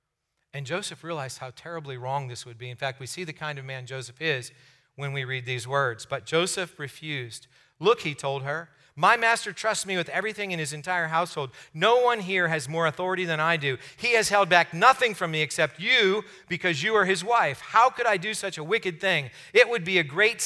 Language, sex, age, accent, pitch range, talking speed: English, male, 40-59, American, 140-200 Hz, 225 wpm